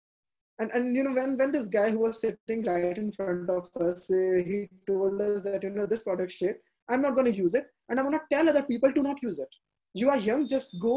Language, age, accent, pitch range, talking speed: English, 20-39, Indian, 180-280 Hz, 255 wpm